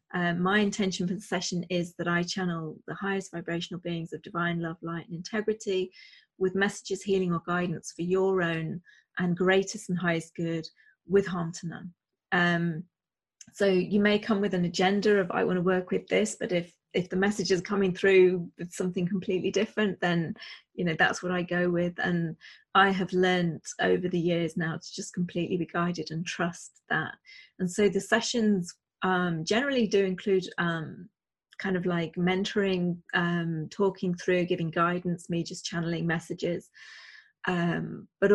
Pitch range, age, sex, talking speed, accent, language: 170-190 Hz, 30-49, female, 175 wpm, British, English